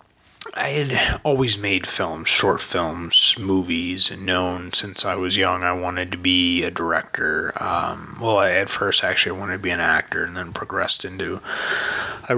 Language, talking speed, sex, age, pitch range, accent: English, 175 wpm, male, 30-49, 95-115 Hz, American